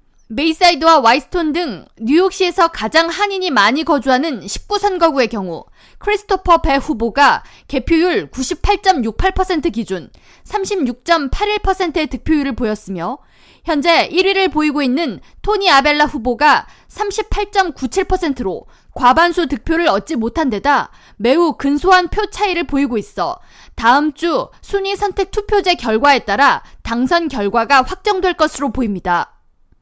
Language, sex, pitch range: Korean, female, 275-375 Hz